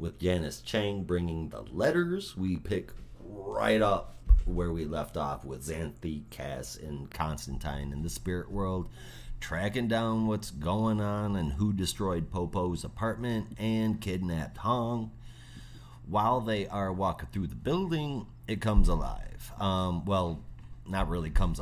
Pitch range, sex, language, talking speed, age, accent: 80-110 Hz, male, English, 140 wpm, 30-49, American